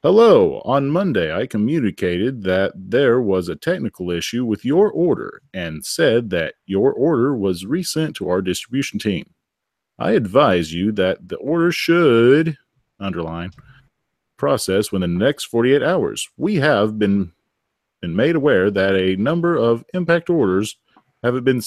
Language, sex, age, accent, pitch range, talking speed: English, male, 40-59, American, 95-120 Hz, 145 wpm